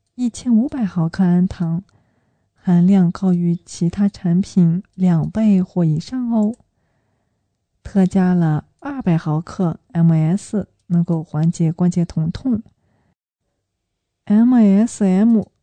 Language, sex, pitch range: Chinese, female, 160-200 Hz